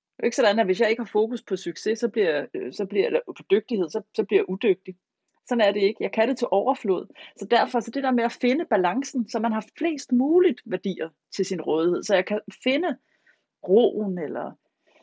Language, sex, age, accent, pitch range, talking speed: Danish, female, 30-49, native, 190-240 Hz, 225 wpm